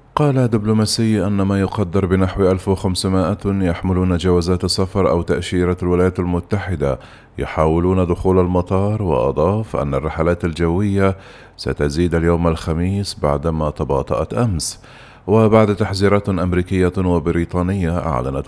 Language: Arabic